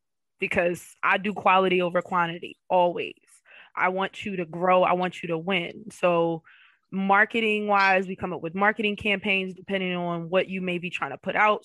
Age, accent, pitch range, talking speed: 20-39, American, 175-200 Hz, 180 wpm